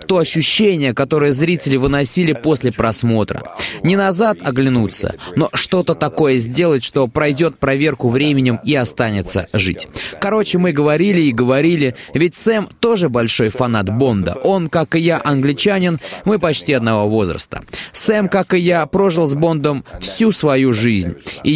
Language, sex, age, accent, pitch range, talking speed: Russian, male, 20-39, native, 125-175 Hz, 145 wpm